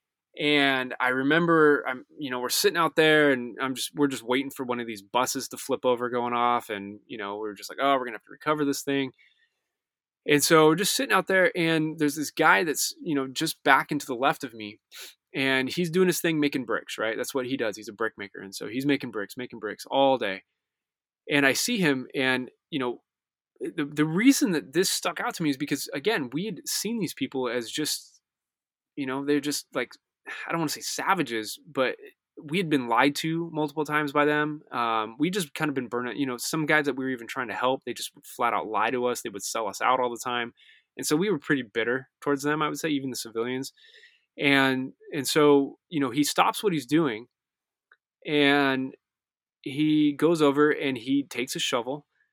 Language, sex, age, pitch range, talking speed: English, male, 20-39, 125-155 Hz, 230 wpm